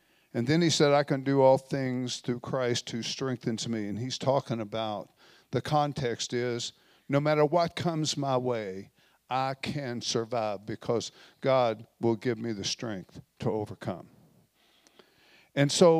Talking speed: 155 wpm